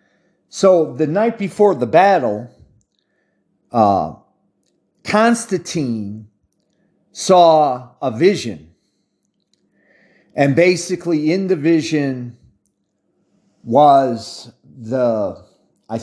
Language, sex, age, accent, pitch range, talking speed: English, male, 40-59, American, 120-170 Hz, 70 wpm